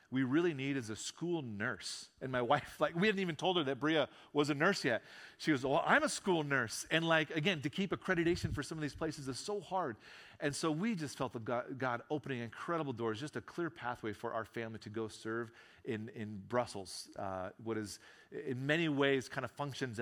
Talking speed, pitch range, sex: 225 wpm, 115-145 Hz, male